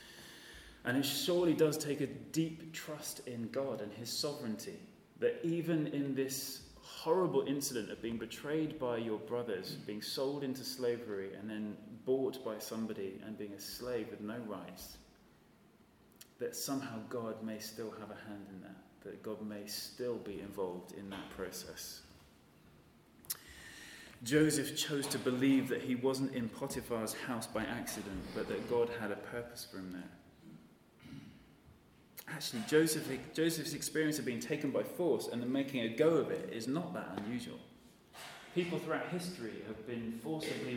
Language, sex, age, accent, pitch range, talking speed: English, male, 30-49, British, 110-155 Hz, 155 wpm